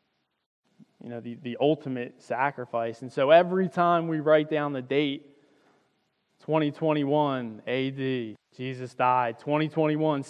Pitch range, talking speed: 130-160 Hz, 115 wpm